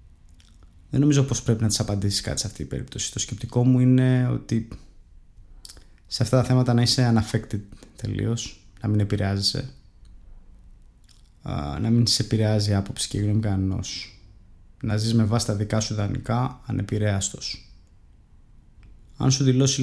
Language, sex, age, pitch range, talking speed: Greek, male, 20-39, 100-125 Hz, 140 wpm